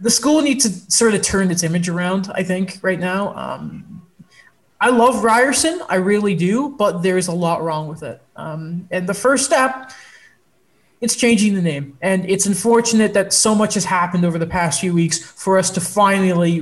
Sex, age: male, 20-39